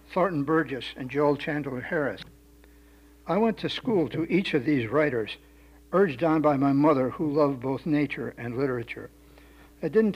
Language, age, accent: English, 60-79, American